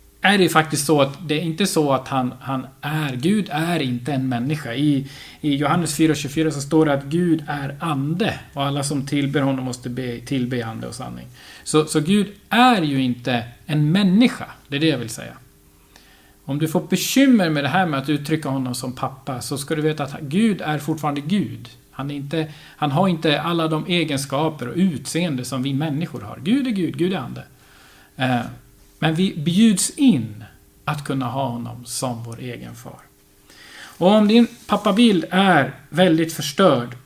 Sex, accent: male, native